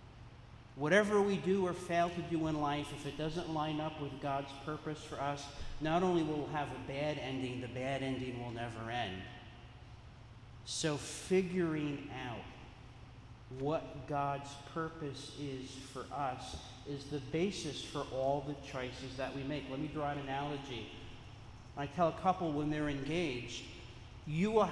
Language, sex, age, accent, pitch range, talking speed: English, male, 40-59, American, 125-170 Hz, 160 wpm